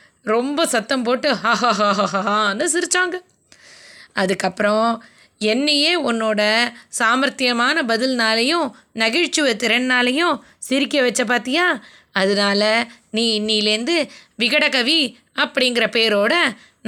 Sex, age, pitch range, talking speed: female, 20-39, 220-305 Hz, 75 wpm